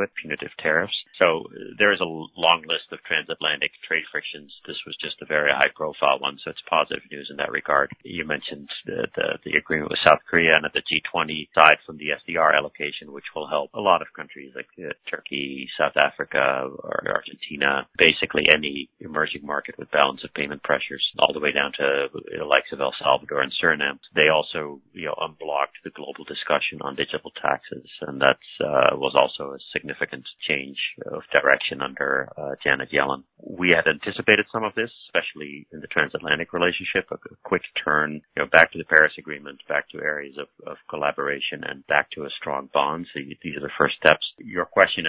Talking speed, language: 195 wpm, English